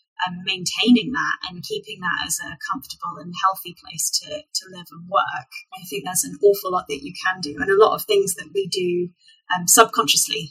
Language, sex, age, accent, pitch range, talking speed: English, female, 20-39, British, 175-265 Hz, 210 wpm